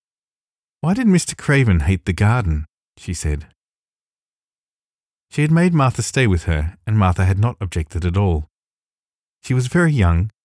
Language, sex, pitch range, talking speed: English, male, 85-115 Hz, 155 wpm